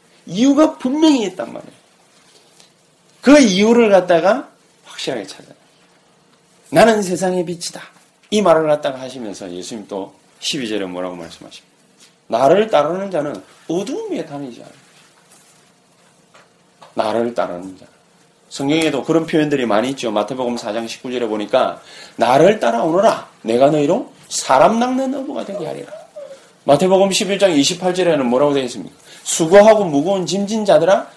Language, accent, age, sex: Korean, native, 30-49, male